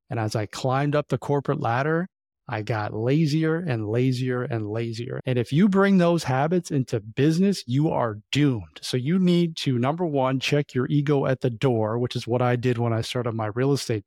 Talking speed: 210 wpm